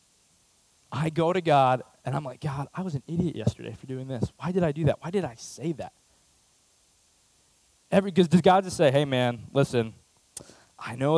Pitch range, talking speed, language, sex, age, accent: 125-170 Hz, 195 wpm, English, male, 20-39, American